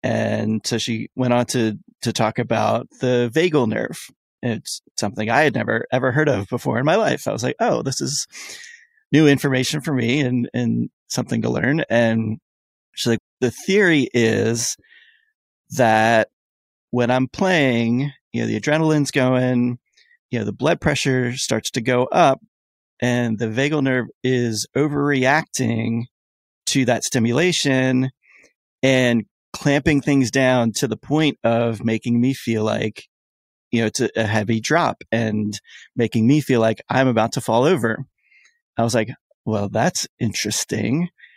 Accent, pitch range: American, 115-140 Hz